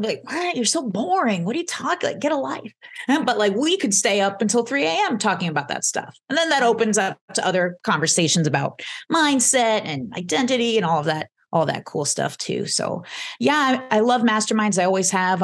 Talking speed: 220 wpm